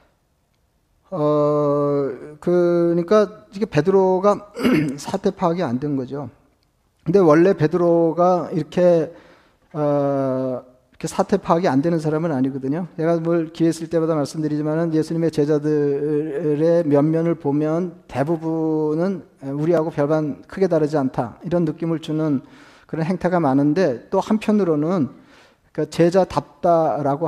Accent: native